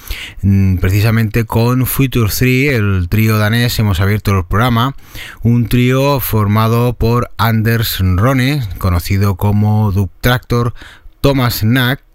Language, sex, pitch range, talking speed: Spanish, male, 95-120 Hz, 115 wpm